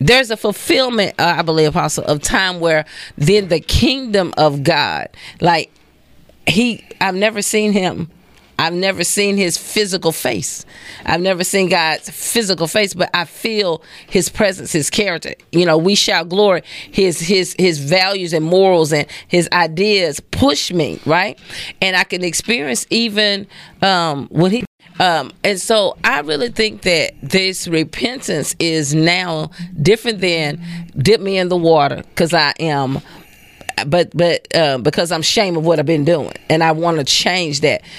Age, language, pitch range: 40-59, English, 165-205 Hz